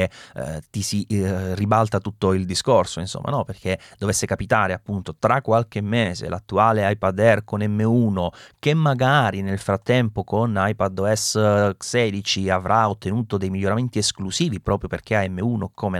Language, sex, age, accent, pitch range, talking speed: Italian, male, 30-49, native, 95-120 Hz, 140 wpm